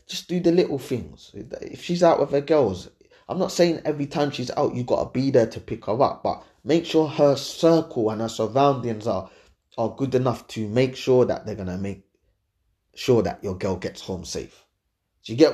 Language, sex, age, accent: English, male, 20-39, British